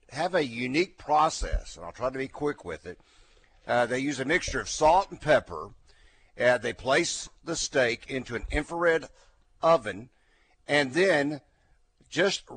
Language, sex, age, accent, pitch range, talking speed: English, male, 60-79, American, 120-170 Hz, 160 wpm